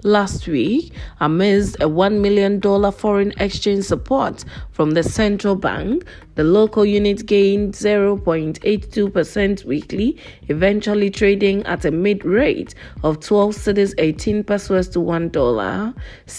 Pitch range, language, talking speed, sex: 175-210 Hz, English, 115 wpm, female